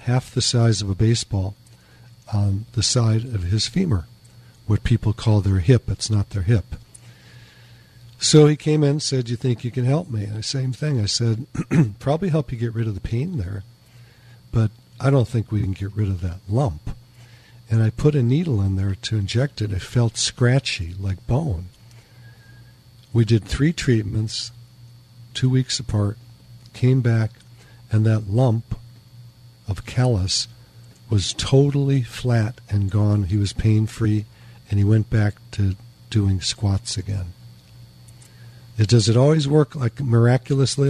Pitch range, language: 110-125 Hz, English